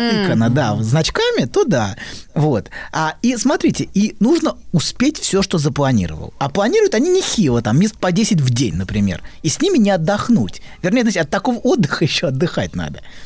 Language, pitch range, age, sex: Russian, 145-215 Hz, 20-39, male